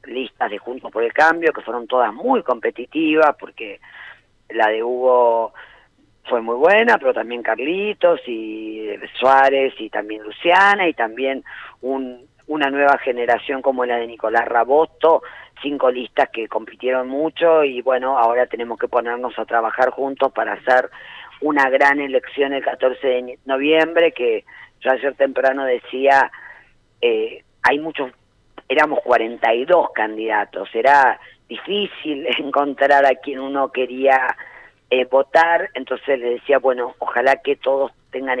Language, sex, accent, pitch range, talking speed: Spanish, female, Argentinian, 125-160 Hz, 135 wpm